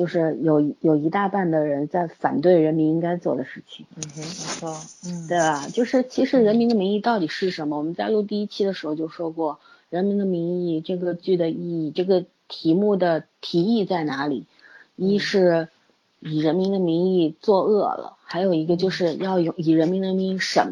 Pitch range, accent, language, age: 160-195 Hz, native, Chinese, 30-49